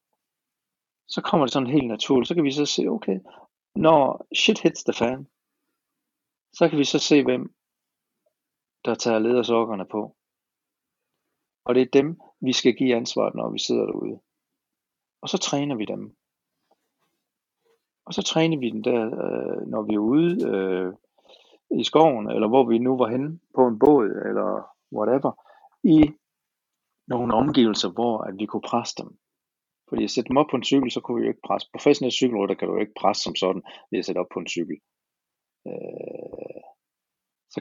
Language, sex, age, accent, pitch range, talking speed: Danish, male, 60-79, native, 110-145 Hz, 170 wpm